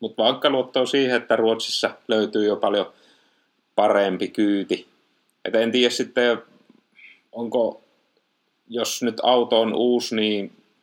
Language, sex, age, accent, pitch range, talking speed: Finnish, male, 30-49, native, 110-125 Hz, 125 wpm